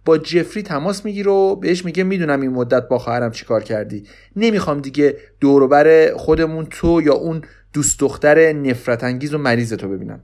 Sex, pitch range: male, 115-185 Hz